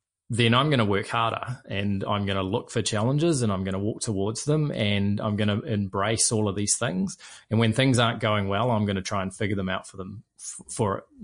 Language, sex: English, male